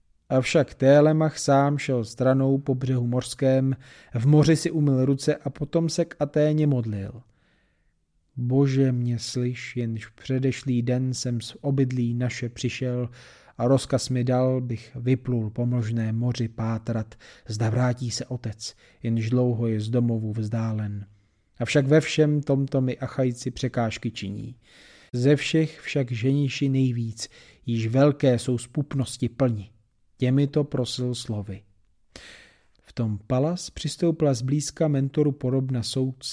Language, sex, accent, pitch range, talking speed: Czech, male, native, 115-135 Hz, 130 wpm